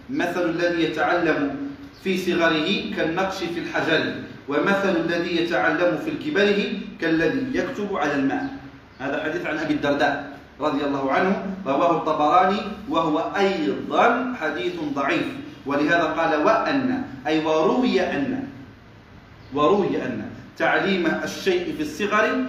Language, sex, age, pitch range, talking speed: Arabic, male, 40-59, 145-200 Hz, 115 wpm